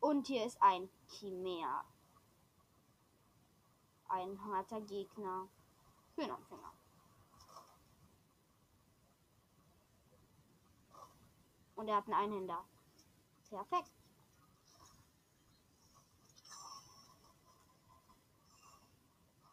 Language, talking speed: German, 45 wpm